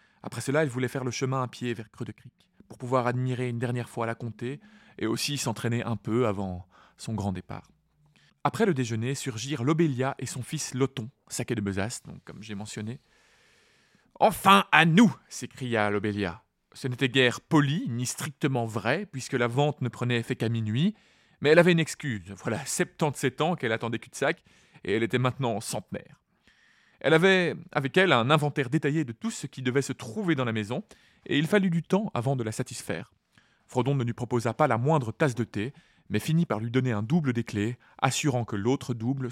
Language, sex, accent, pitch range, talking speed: French, male, French, 115-155 Hz, 195 wpm